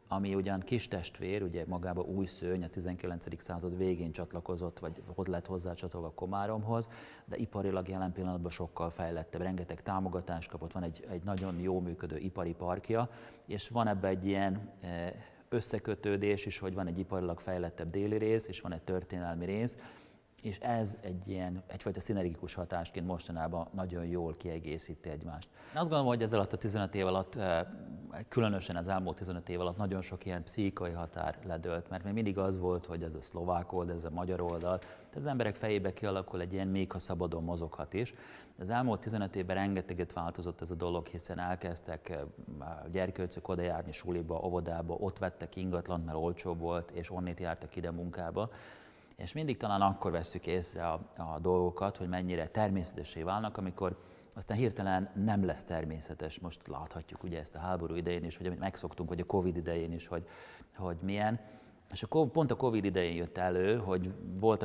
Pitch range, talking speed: 85-100 Hz, 175 wpm